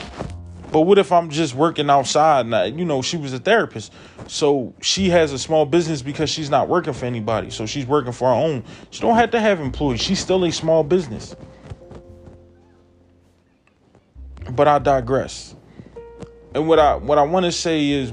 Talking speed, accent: 180 wpm, American